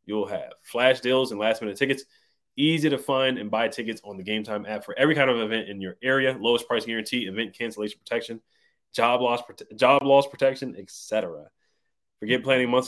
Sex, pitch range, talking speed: male, 100-125 Hz, 200 wpm